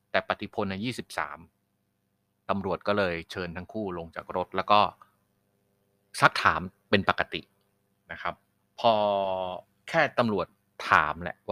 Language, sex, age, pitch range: Thai, male, 30-49, 90-100 Hz